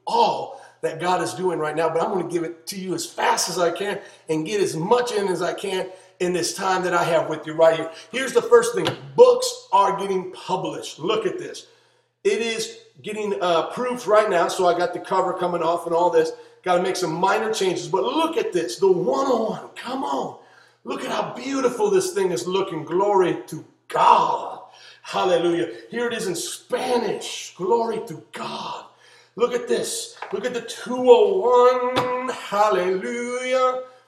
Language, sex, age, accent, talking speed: English, male, 40-59, American, 195 wpm